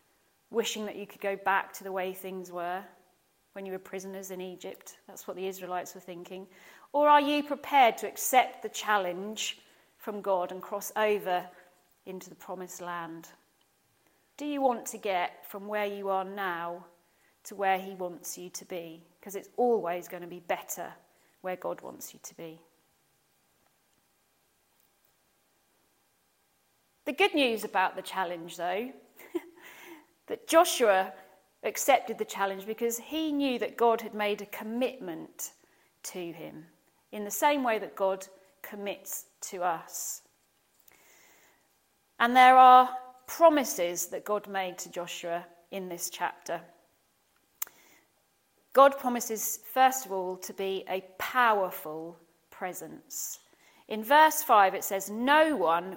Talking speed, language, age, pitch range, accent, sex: 140 wpm, English, 40-59, 180-235 Hz, British, female